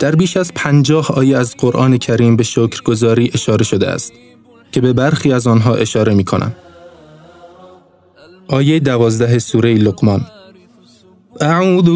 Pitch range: 125-175 Hz